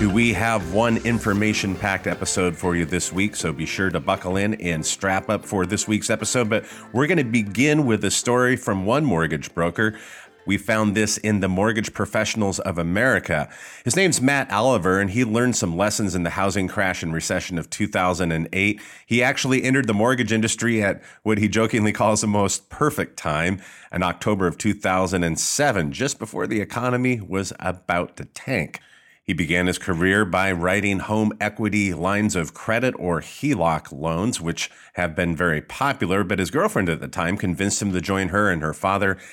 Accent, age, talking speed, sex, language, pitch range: American, 30-49, 185 wpm, male, English, 90-110 Hz